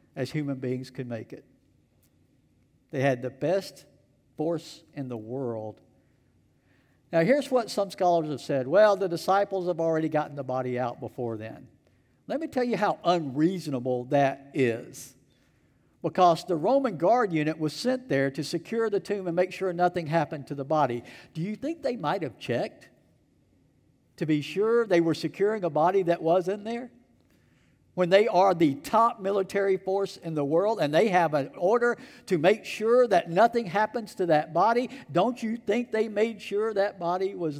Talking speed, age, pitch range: 180 wpm, 60-79, 145-190 Hz